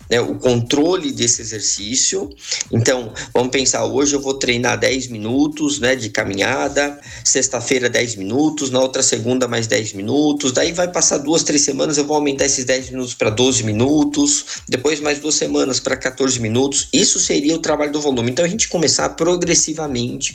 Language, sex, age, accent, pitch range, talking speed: Portuguese, male, 20-39, Brazilian, 120-145 Hz, 175 wpm